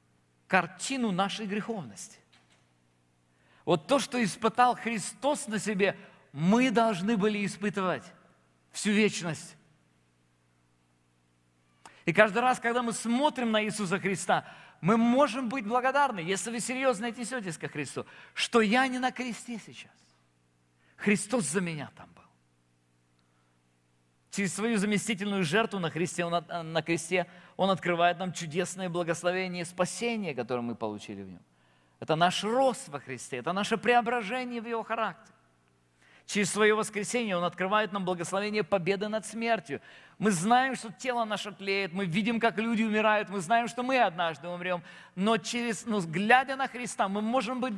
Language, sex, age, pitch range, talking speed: Russian, male, 50-69, 145-225 Hz, 145 wpm